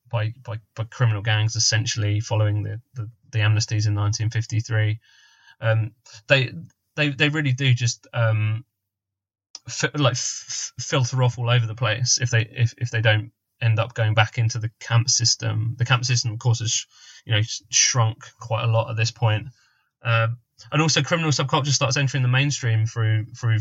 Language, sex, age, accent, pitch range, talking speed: English, male, 20-39, British, 110-120 Hz, 190 wpm